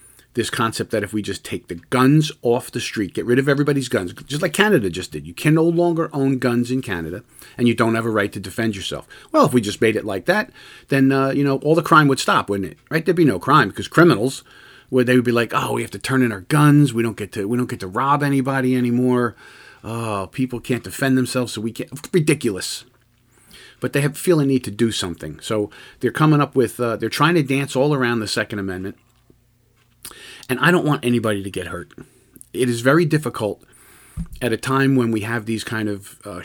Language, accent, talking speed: English, American, 235 wpm